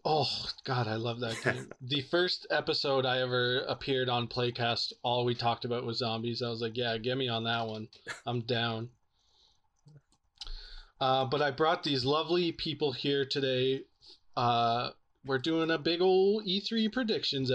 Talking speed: 165 wpm